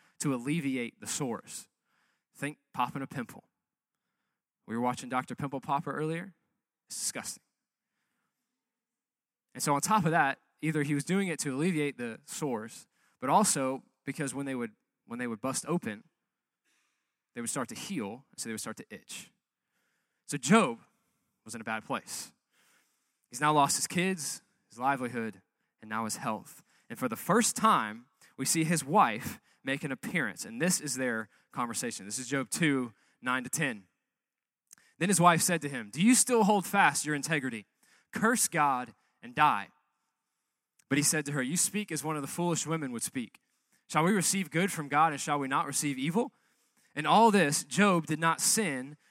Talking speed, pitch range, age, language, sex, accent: 175 wpm, 130-185 Hz, 20-39, English, male, American